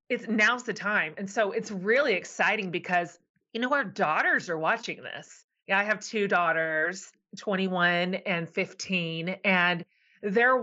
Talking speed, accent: 150 wpm, American